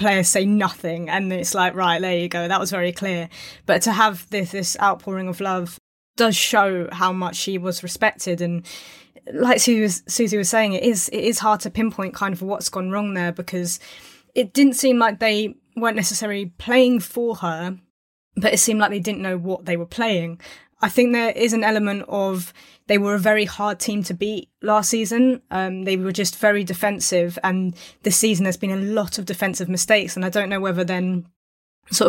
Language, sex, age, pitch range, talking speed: English, female, 20-39, 180-210 Hz, 205 wpm